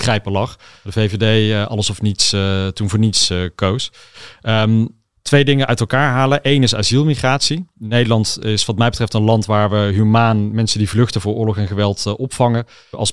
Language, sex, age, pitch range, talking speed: Dutch, male, 40-59, 105-120 Hz, 190 wpm